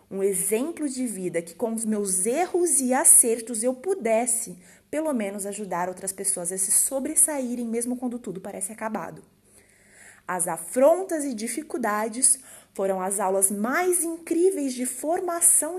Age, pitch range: 20-39, 210-275 Hz